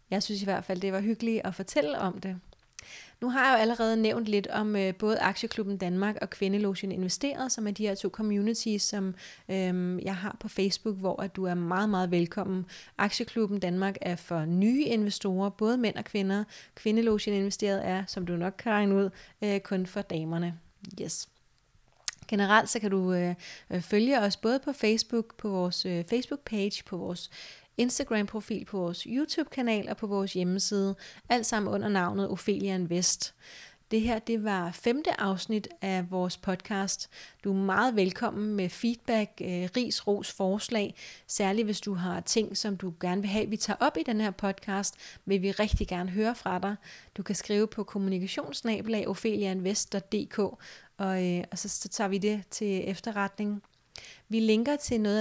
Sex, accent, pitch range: female, native, 190-220 Hz